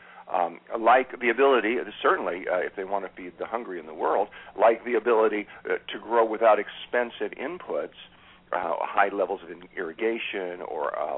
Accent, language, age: American, English, 50-69